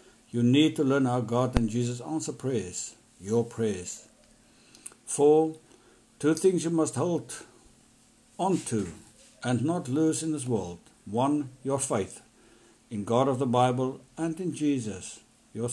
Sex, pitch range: male, 115-140 Hz